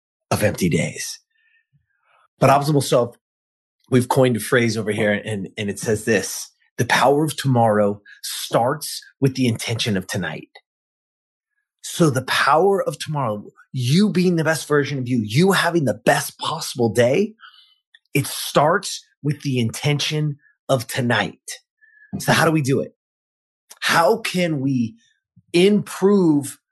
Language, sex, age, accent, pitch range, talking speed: English, male, 30-49, American, 120-160 Hz, 140 wpm